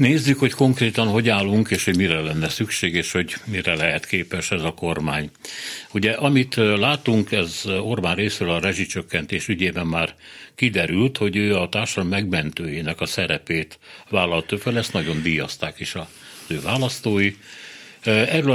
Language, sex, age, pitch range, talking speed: Hungarian, male, 60-79, 85-110 Hz, 150 wpm